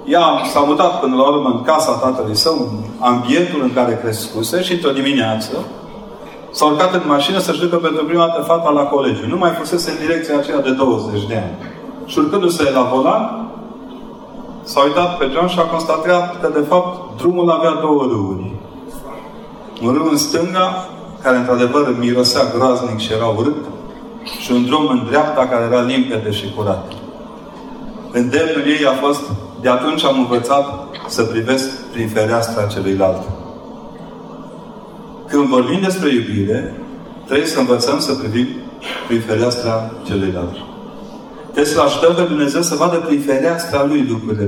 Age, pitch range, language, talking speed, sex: 40-59, 115-170 Hz, Romanian, 155 wpm, male